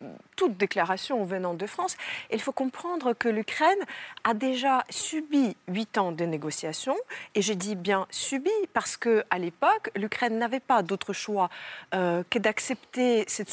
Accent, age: French, 30-49